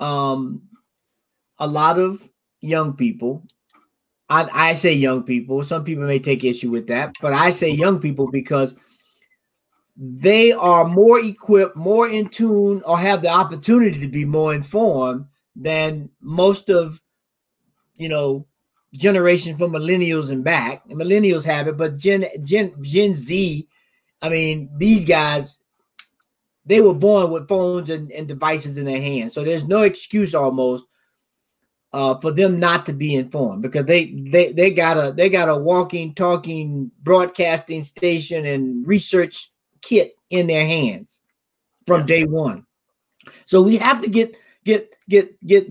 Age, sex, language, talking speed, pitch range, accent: 30-49, male, English, 150 wpm, 145-200 Hz, American